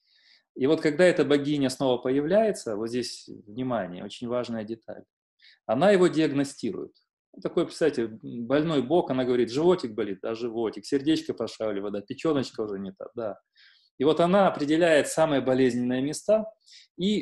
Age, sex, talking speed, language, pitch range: 30-49, male, 150 wpm, Russian, 125-160 Hz